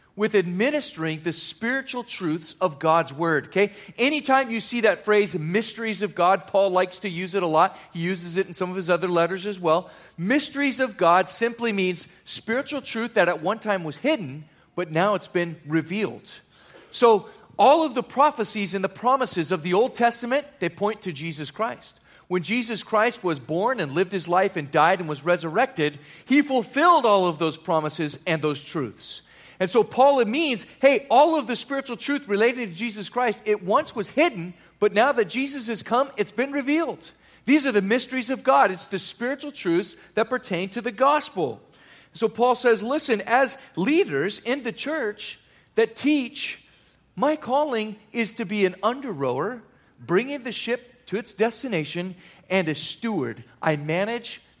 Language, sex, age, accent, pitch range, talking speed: English, male, 40-59, American, 175-250 Hz, 180 wpm